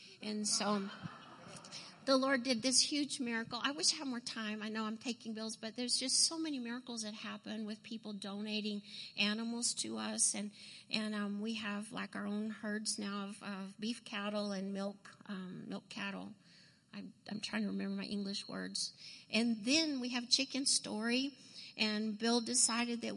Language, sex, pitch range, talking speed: English, female, 205-245 Hz, 185 wpm